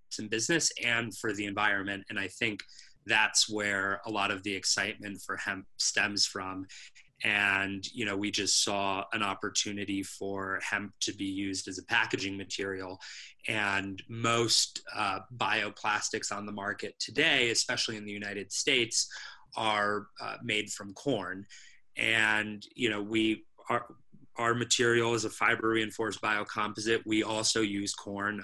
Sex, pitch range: male, 100-110 Hz